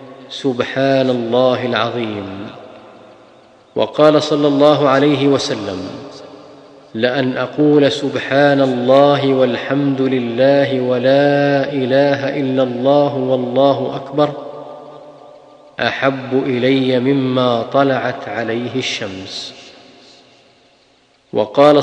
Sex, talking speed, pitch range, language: male, 75 wpm, 130-145 Hz, Arabic